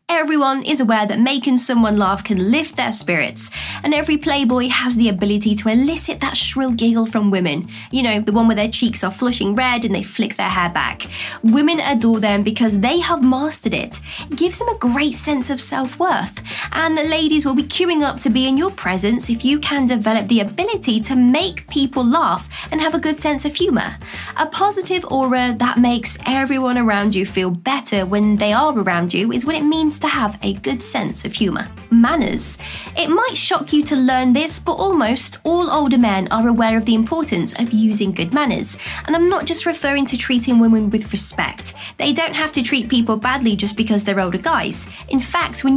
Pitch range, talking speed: 220-310 Hz, 205 wpm